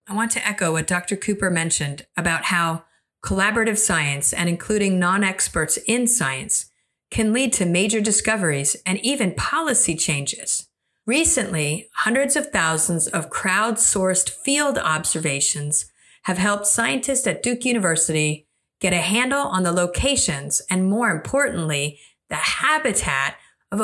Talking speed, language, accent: 130 wpm, English, American